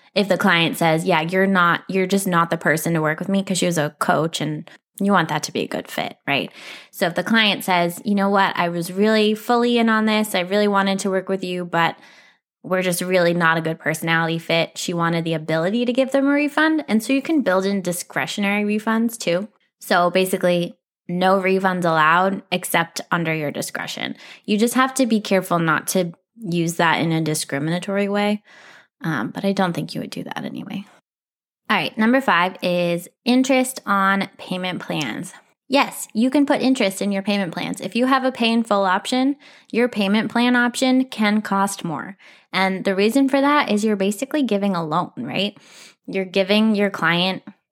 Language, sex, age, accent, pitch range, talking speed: English, female, 20-39, American, 175-220 Hz, 200 wpm